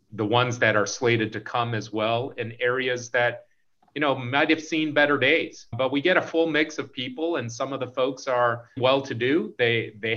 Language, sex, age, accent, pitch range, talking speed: English, male, 30-49, American, 115-140 Hz, 210 wpm